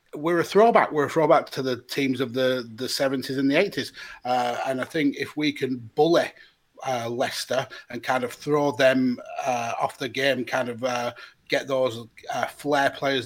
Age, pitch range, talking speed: 30-49, 125-145 Hz, 195 wpm